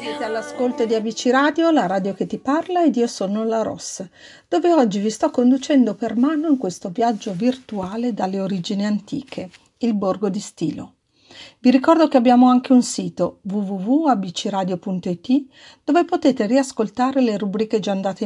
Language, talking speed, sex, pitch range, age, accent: Italian, 160 wpm, female, 195-260 Hz, 50-69, native